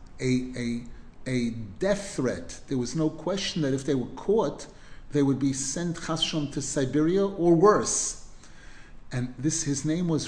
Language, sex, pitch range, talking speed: English, male, 125-170 Hz, 165 wpm